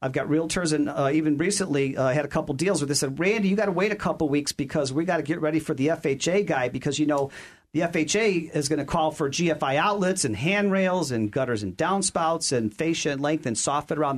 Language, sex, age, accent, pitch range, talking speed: English, male, 40-59, American, 140-190 Hz, 250 wpm